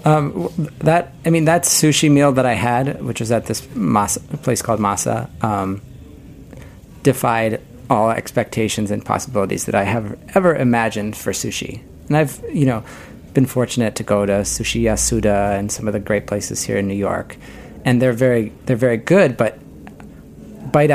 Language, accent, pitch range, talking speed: English, American, 105-130 Hz, 170 wpm